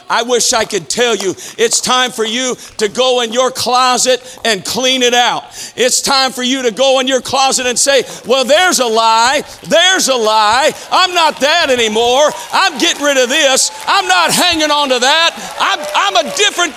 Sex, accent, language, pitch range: male, American, English, 250-340 Hz